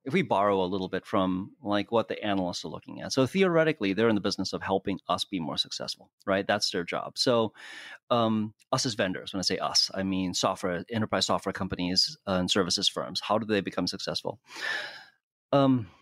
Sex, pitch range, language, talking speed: male, 100-130 Hz, English, 205 wpm